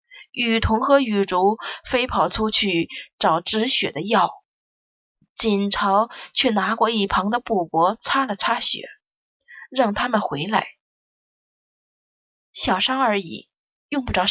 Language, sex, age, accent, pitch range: Chinese, female, 20-39, native, 190-245 Hz